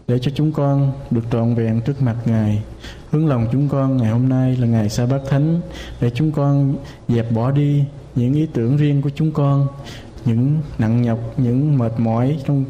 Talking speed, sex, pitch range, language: 200 wpm, male, 120-145 Hz, Vietnamese